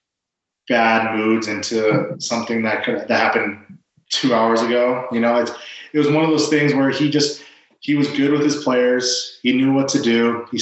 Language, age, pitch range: English, 20-39, 115-125 Hz